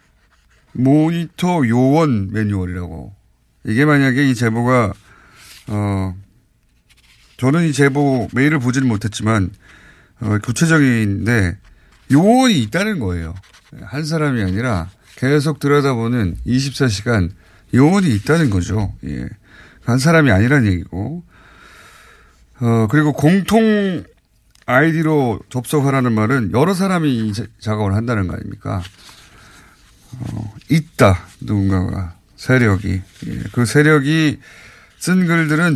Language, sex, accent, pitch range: Korean, male, native, 105-145 Hz